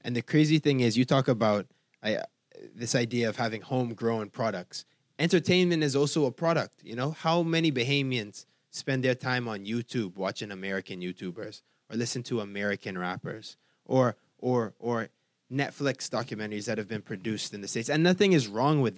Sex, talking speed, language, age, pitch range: male, 170 wpm, English, 20-39, 115-145 Hz